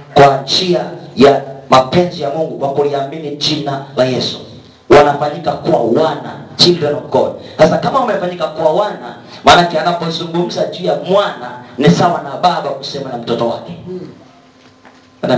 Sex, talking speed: male, 135 wpm